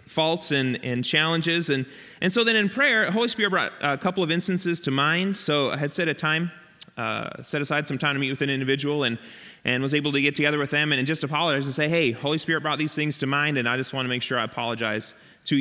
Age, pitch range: 30-49, 135-175 Hz